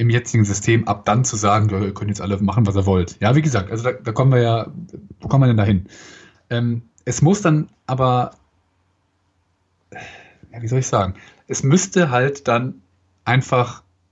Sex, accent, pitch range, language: male, German, 100-135 Hz, German